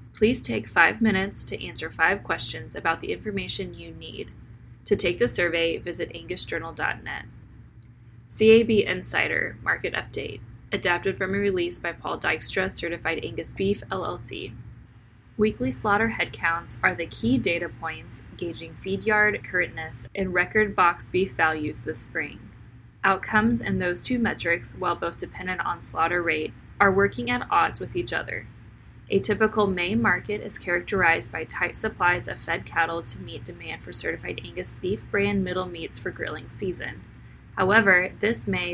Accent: American